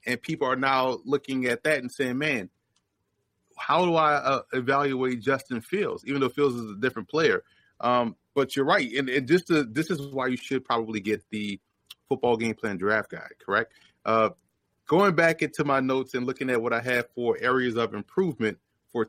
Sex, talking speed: male, 195 wpm